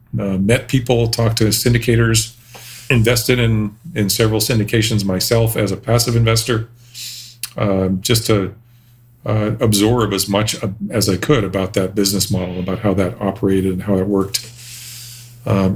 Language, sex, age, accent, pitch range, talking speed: English, male, 40-59, American, 95-120 Hz, 150 wpm